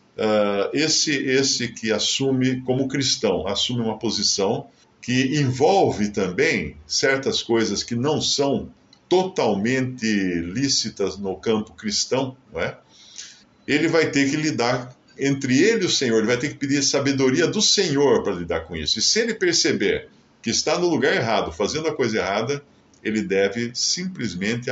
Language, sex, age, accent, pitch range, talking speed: Portuguese, male, 50-69, Brazilian, 105-140 Hz, 150 wpm